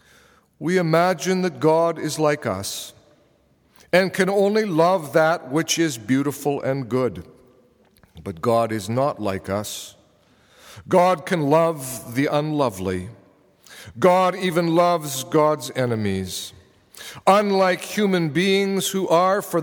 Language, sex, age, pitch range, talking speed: English, male, 50-69, 125-180 Hz, 120 wpm